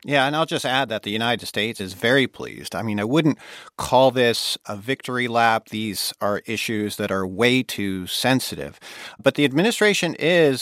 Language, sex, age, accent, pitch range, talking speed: English, male, 50-69, American, 105-135 Hz, 185 wpm